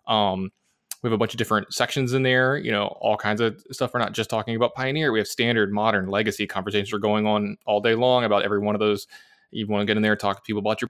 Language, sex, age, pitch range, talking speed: English, male, 20-39, 100-120 Hz, 280 wpm